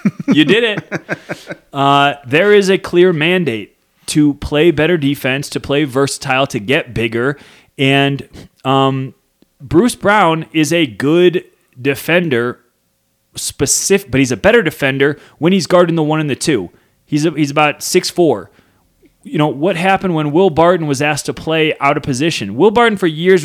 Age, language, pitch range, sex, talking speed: 20-39, English, 140-185 Hz, male, 165 wpm